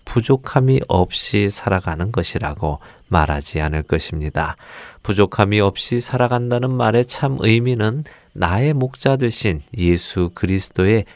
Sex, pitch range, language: male, 85-120 Hz, Korean